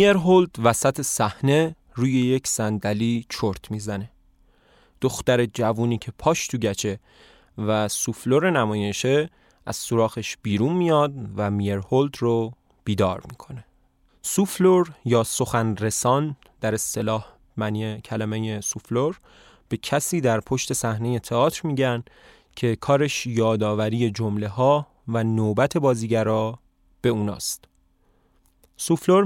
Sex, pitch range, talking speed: male, 110-155 Hz, 105 wpm